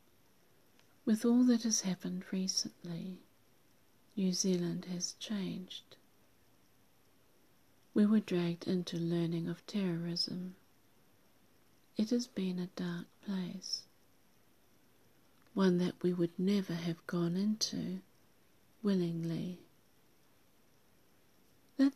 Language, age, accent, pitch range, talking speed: English, 50-69, British, 175-200 Hz, 90 wpm